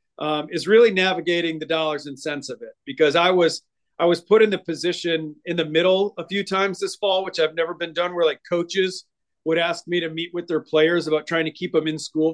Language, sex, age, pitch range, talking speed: English, male, 40-59, 160-195 Hz, 245 wpm